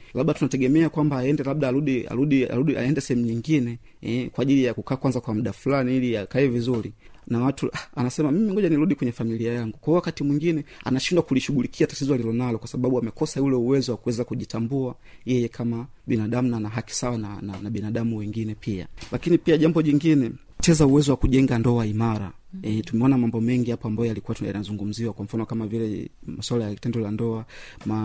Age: 30-49